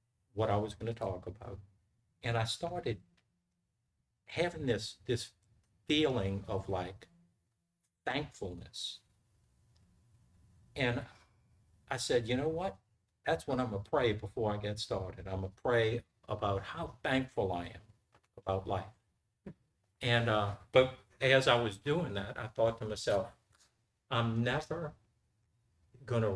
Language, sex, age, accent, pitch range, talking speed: English, male, 50-69, American, 100-120 Hz, 130 wpm